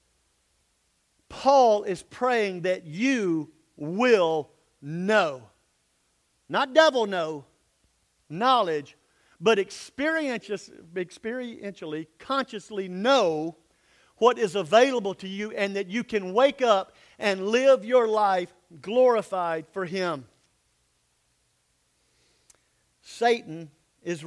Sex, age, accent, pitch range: male, 50-69, American, 155-240 Hz